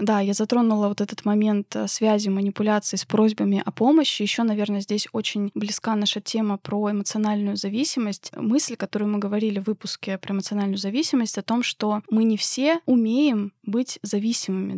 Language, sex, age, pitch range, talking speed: Russian, female, 20-39, 200-235 Hz, 160 wpm